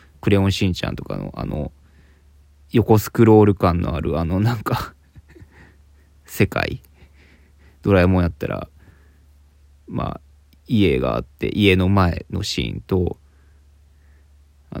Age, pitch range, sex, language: 20-39, 75-95 Hz, male, Japanese